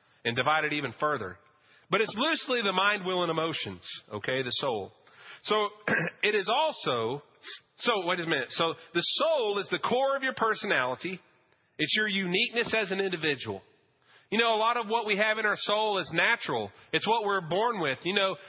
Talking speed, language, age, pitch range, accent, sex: 190 wpm, English, 40-59, 150-210 Hz, American, male